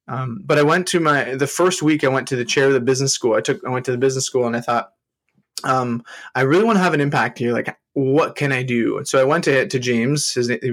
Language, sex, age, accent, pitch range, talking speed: English, male, 20-39, American, 125-150 Hz, 290 wpm